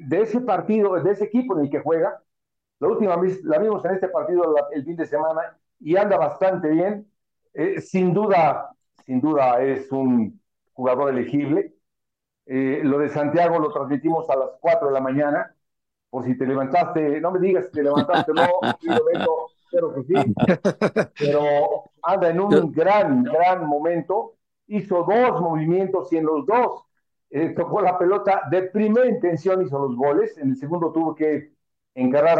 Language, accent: Spanish, Mexican